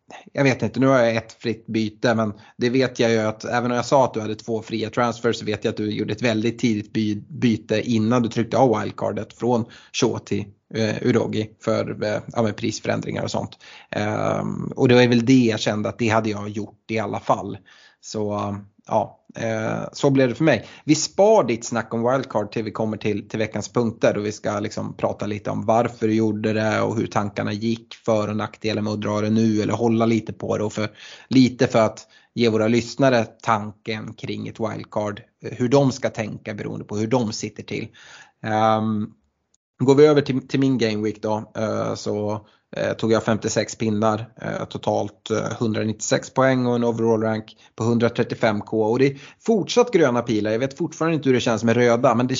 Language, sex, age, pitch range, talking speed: Swedish, male, 30-49, 110-120 Hz, 205 wpm